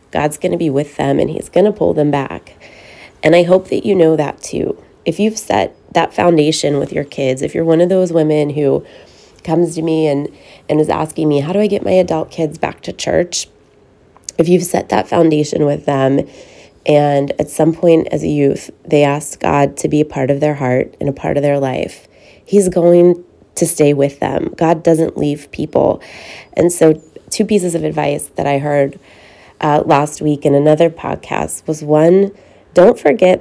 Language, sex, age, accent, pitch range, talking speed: English, female, 20-39, American, 145-170 Hz, 205 wpm